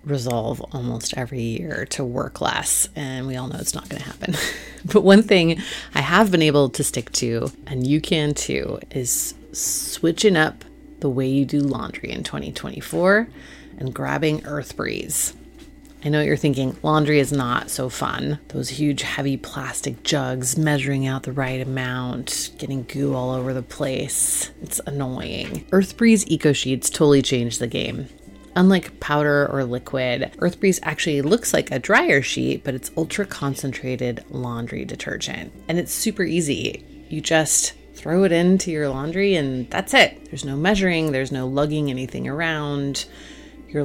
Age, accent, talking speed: 30-49, American, 160 wpm